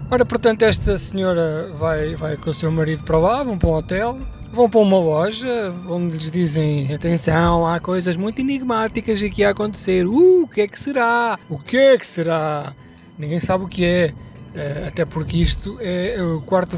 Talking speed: 195 wpm